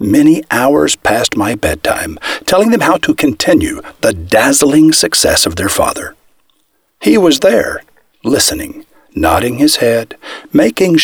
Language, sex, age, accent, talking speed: English, male, 60-79, American, 130 wpm